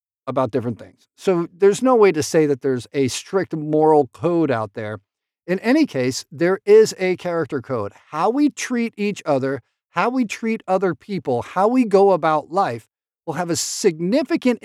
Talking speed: 180 wpm